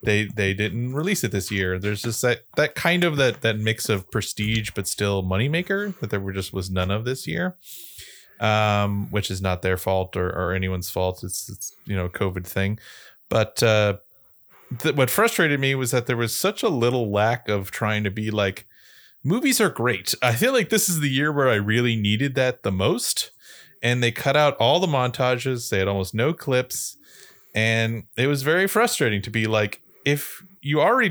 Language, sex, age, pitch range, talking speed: English, male, 20-39, 100-135 Hz, 205 wpm